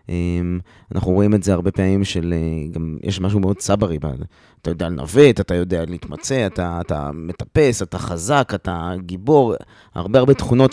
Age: 20-39